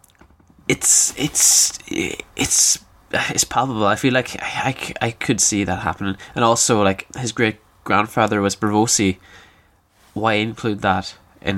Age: 10-29